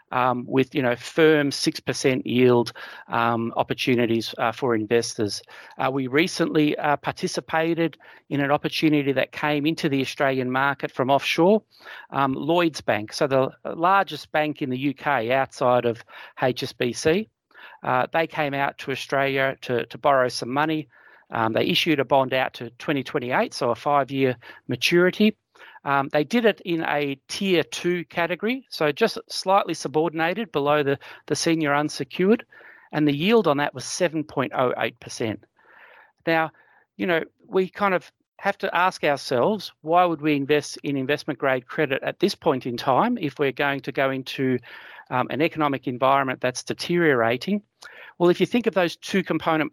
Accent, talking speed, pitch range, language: Australian, 160 wpm, 135-165 Hz, English